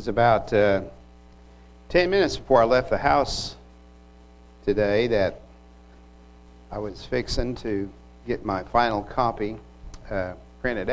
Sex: male